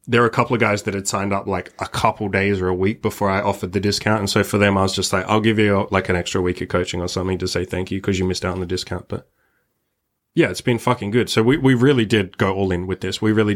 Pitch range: 100-120 Hz